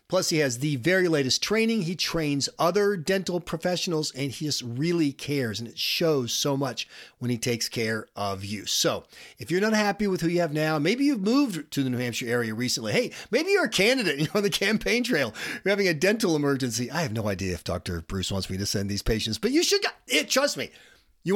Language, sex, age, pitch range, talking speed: English, male, 40-59, 110-180 Hz, 235 wpm